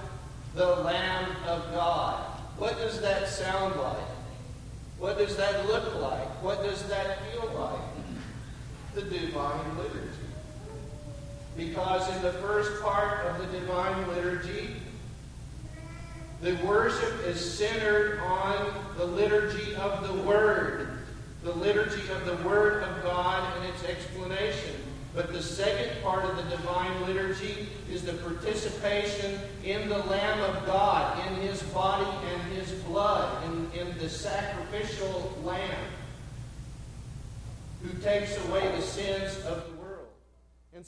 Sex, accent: male, American